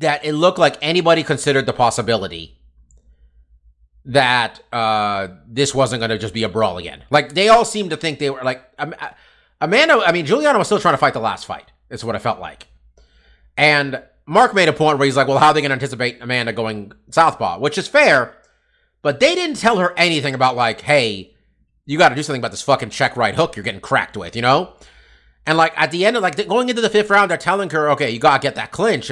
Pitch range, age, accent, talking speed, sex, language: 110-175 Hz, 30-49, American, 235 wpm, male, English